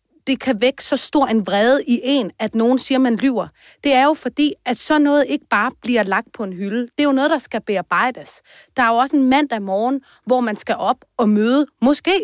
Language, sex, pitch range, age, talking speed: Danish, female, 220-285 Hz, 30-49, 240 wpm